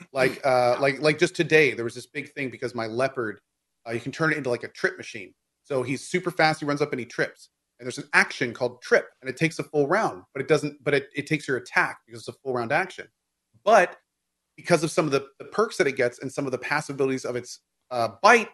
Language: English